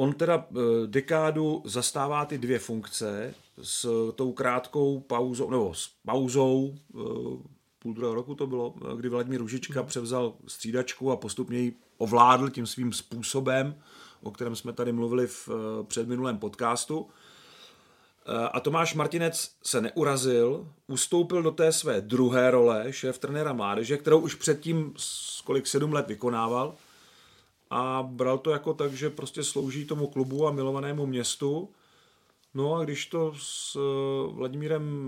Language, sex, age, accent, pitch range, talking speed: Czech, male, 30-49, native, 125-155 Hz, 135 wpm